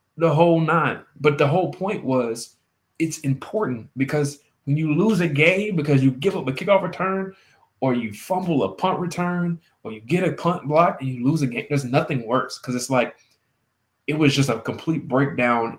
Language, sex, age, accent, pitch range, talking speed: English, male, 20-39, American, 115-140 Hz, 200 wpm